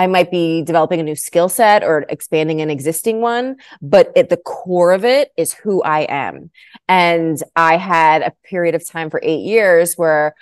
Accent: American